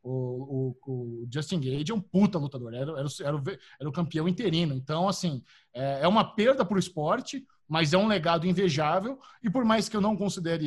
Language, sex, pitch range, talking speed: Portuguese, male, 160-215 Hz, 190 wpm